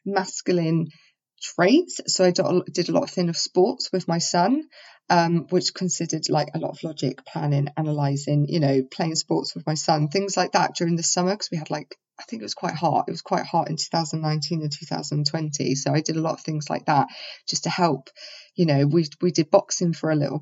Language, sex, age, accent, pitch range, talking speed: English, female, 20-39, British, 150-175 Hz, 225 wpm